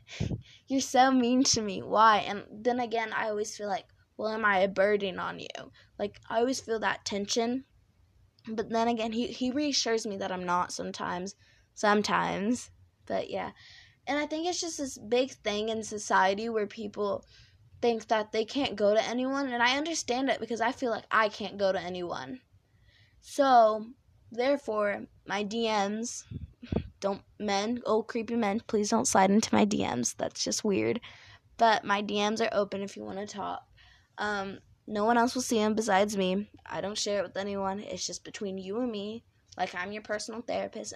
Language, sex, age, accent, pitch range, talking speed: English, female, 10-29, American, 190-230 Hz, 185 wpm